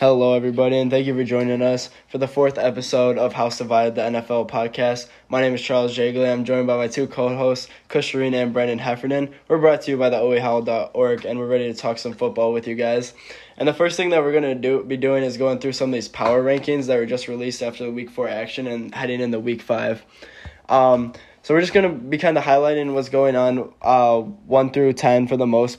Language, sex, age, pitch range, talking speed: English, male, 10-29, 120-135 Hz, 240 wpm